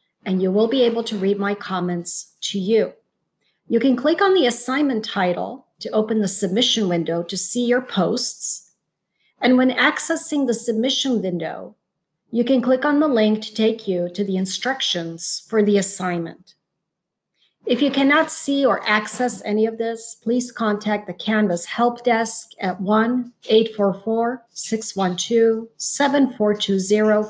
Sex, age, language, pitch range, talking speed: female, 40-59, English, 190-235 Hz, 145 wpm